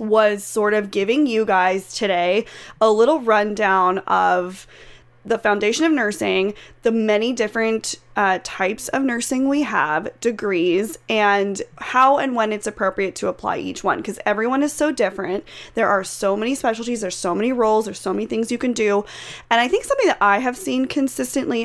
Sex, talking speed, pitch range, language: female, 180 wpm, 195-230 Hz, English